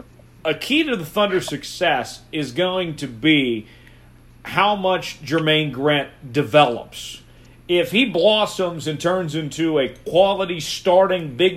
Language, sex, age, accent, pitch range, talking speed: English, male, 40-59, American, 130-180 Hz, 130 wpm